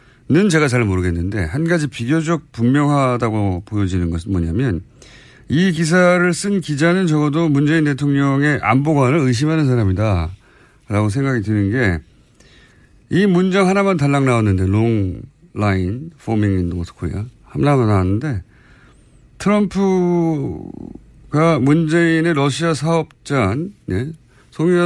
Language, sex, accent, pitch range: Korean, male, native, 105-155 Hz